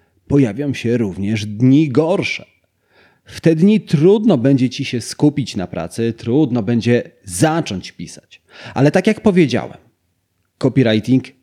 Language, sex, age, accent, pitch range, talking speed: Polish, male, 30-49, native, 95-140 Hz, 125 wpm